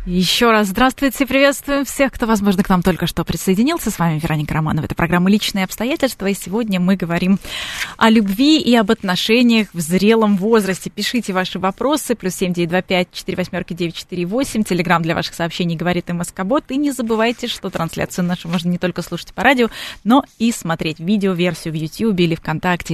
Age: 20-39